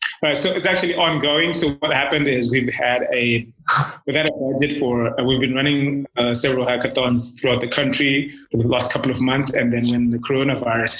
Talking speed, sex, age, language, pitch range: 205 wpm, male, 30-49, English, 120-140 Hz